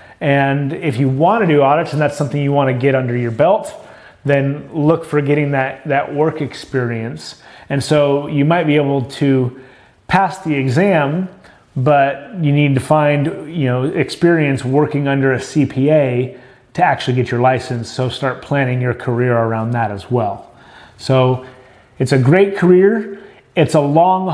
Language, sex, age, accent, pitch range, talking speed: English, male, 30-49, American, 135-175 Hz, 170 wpm